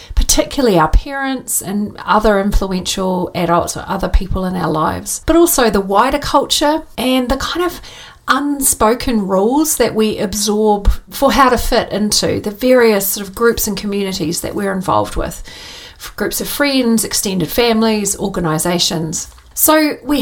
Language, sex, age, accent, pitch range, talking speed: English, female, 40-59, Australian, 200-270 Hz, 150 wpm